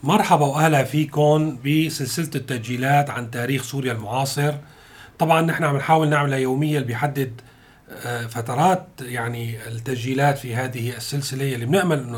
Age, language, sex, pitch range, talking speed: 40-59, Arabic, male, 125-150 Hz, 130 wpm